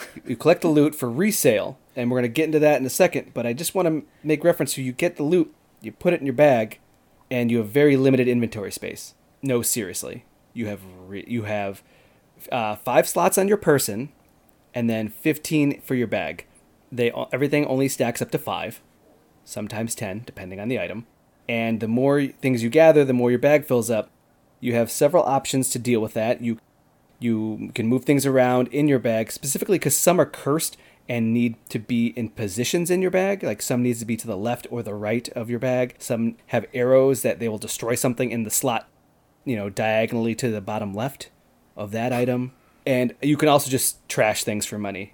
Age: 30-49